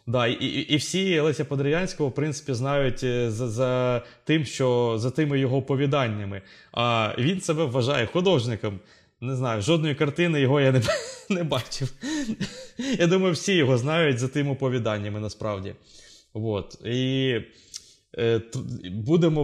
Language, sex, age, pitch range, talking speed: Ukrainian, male, 20-39, 120-150 Hz, 140 wpm